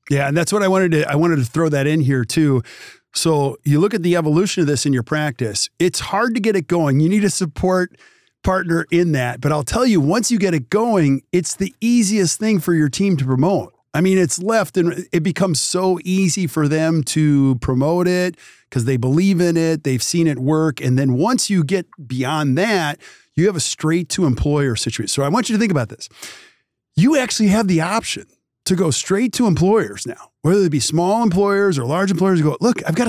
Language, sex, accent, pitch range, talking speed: English, male, American, 140-190 Hz, 225 wpm